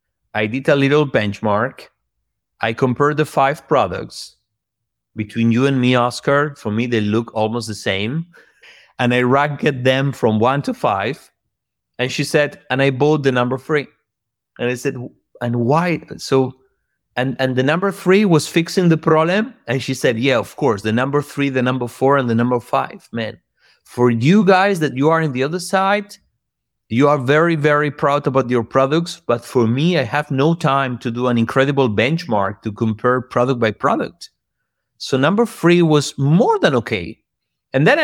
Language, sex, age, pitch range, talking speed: English, male, 30-49, 120-150 Hz, 180 wpm